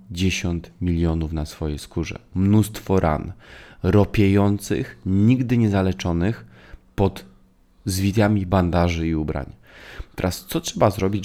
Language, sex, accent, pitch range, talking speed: Polish, male, native, 85-100 Hz, 105 wpm